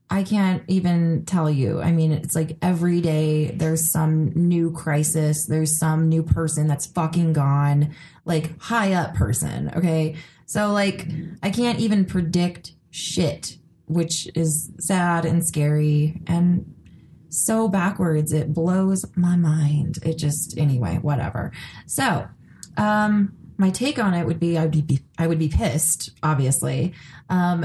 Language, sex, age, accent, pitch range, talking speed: English, female, 20-39, American, 155-180 Hz, 145 wpm